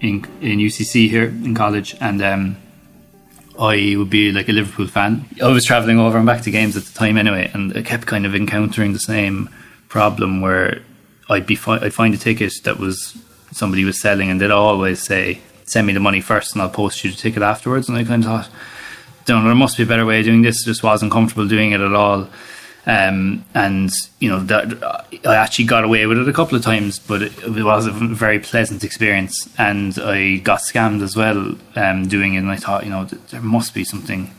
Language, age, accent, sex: English, 20-39, Irish, male